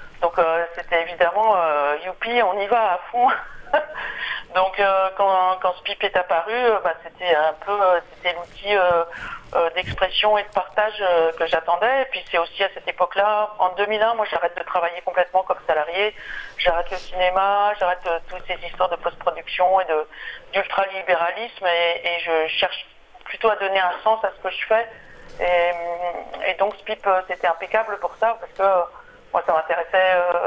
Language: French